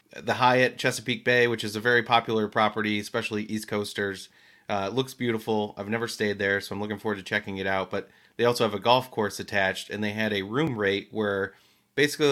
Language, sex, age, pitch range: English, male, 30-49, 100-115 Hz